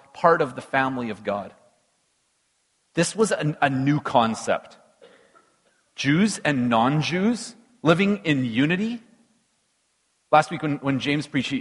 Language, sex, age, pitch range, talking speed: English, male, 40-59, 140-200 Hz, 125 wpm